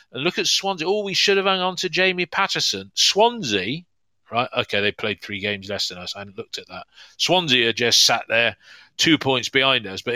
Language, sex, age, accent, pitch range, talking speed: English, male, 40-59, British, 105-145 Hz, 220 wpm